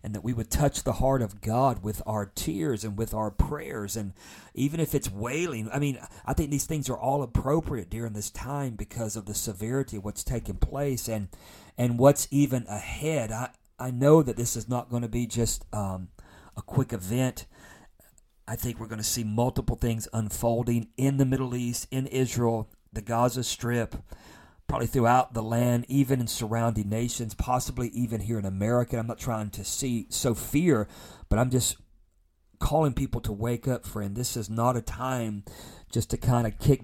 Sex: male